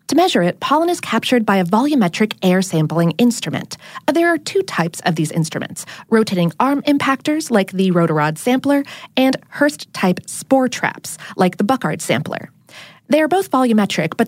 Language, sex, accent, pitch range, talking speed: English, female, American, 180-280 Hz, 165 wpm